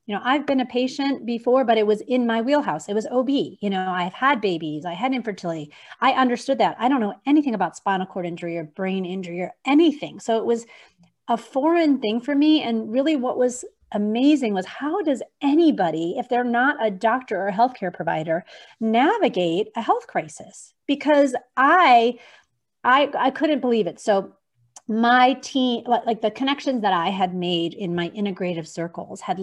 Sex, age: female, 40-59